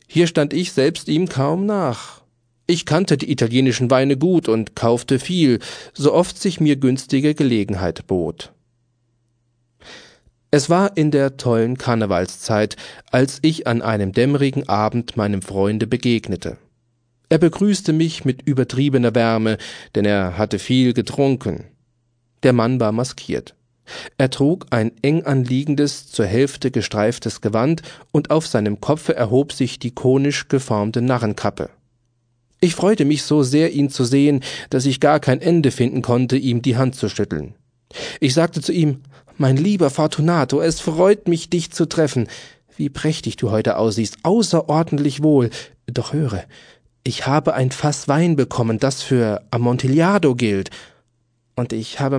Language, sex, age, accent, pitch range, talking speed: German, male, 40-59, German, 120-150 Hz, 145 wpm